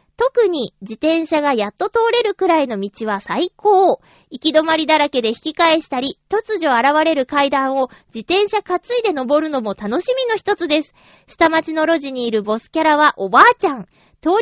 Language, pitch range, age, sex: Japanese, 245-370 Hz, 20-39, female